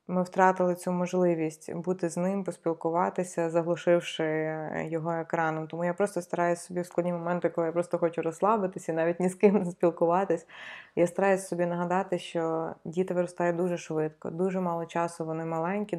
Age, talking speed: 20-39, 165 wpm